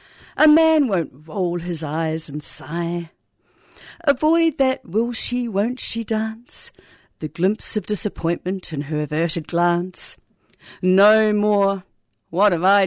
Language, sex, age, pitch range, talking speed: English, female, 50-69, 170-245 Hz, 115 wpm